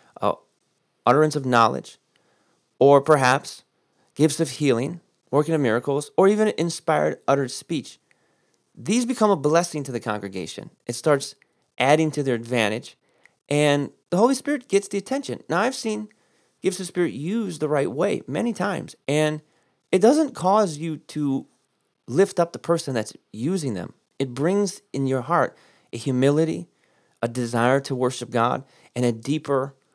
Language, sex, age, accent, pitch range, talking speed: English, male, 30-49, American, 120-160 Hz, 155 wpm